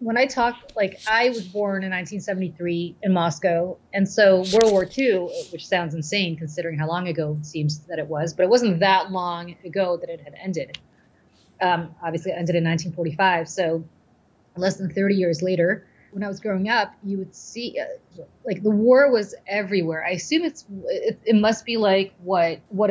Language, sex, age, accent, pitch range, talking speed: English, female, 30-49, American, 165-195 Hz, 195 wpm